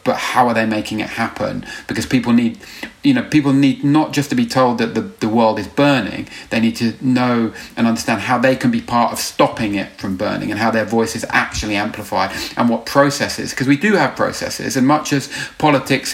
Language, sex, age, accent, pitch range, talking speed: English, male, 40-59, British, 115-145 Hz, 220 wpm